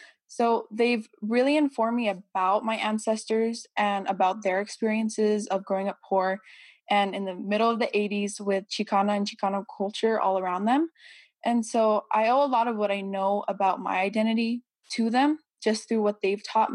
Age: 10-29